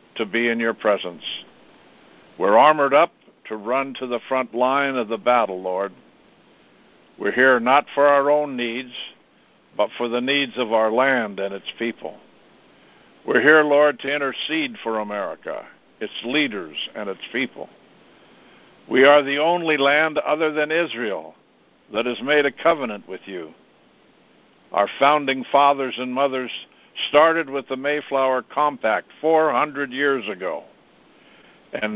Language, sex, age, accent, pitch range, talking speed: English, male, 60-79, American, 120-145 Hz, 145 wpm